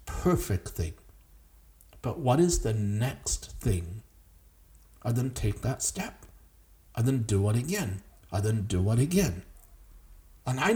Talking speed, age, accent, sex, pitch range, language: 140 wpm, 60-79, American, male, 80-125 Hz, English